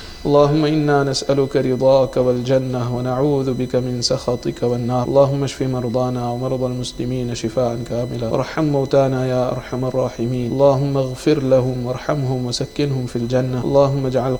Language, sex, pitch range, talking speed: English, male, 125-140 Hz, 130 wpm